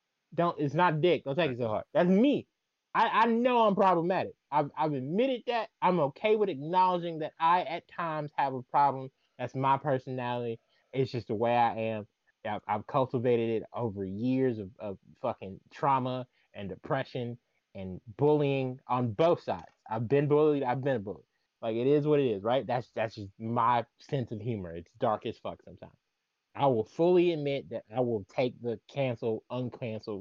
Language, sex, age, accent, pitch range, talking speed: English, male, 20-39, American, 115-150 Hz, 185 wpm